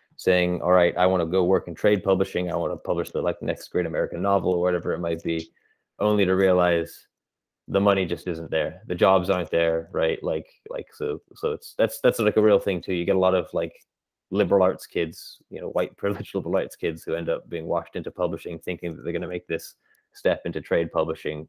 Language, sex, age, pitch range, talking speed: English, male, 20-39, 90-110 Hz, 235 wpm